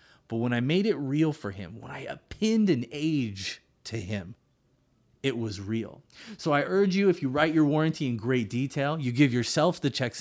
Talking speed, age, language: 205 wpm, 30-49, English